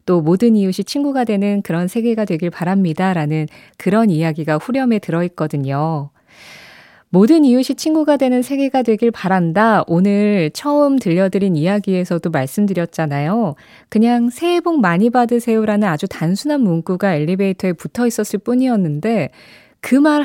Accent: native